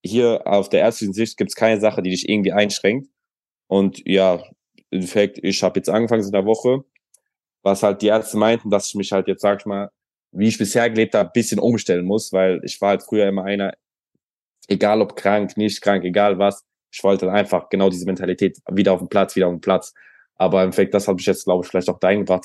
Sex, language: male, German